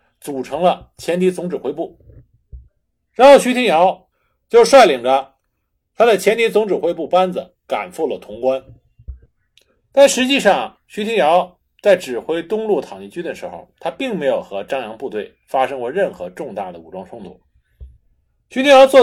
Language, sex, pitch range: Chinese, male, 180-270 Hz